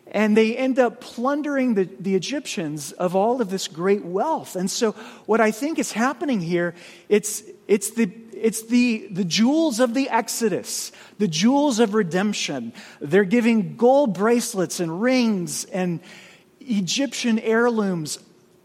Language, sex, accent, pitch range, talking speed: English, male, American, 170-230 Hz, 145 wpm